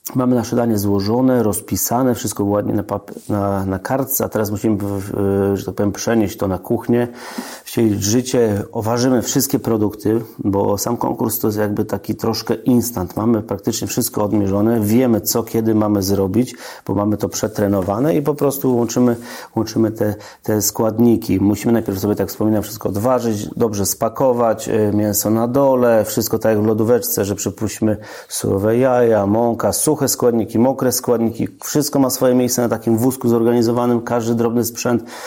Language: Polish